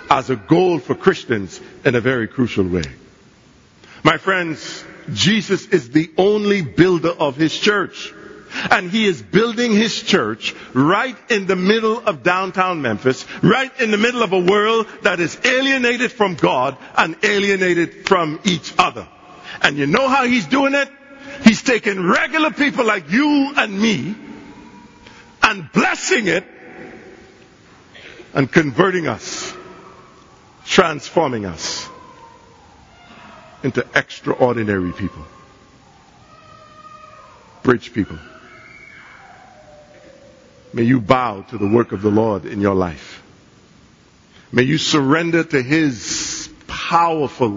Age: 50-69